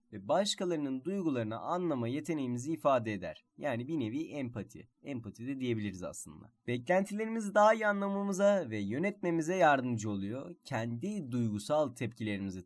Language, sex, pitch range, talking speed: Turkish, male, 125-190 Hz, 125 wpm